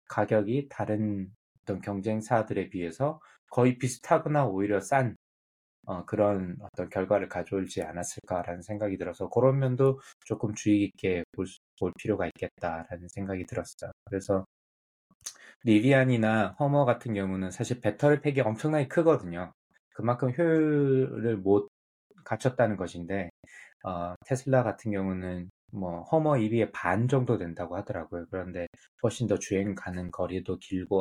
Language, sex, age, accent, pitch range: Korean, male, 20-39, native, 90-120 Hz